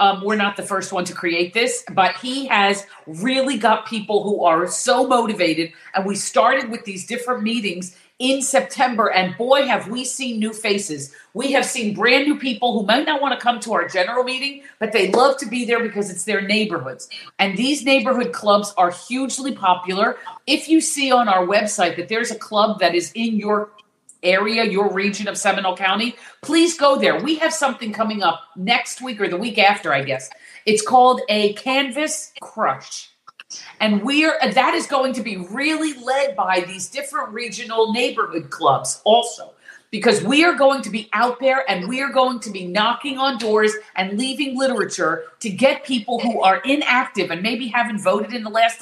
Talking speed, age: 195 wpm, 50-69